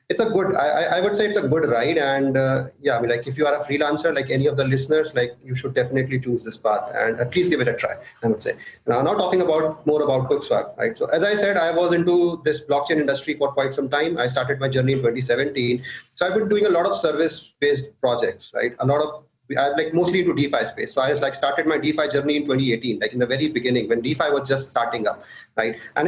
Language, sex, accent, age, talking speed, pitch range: English, male, Indian, 30-49, 265 wpm, 135-180 Hz